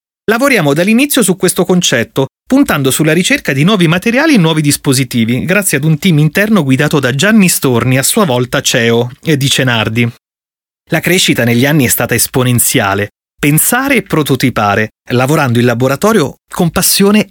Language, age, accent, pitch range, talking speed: Italian, 30-49, native, 125-165 Hz, 155 wpm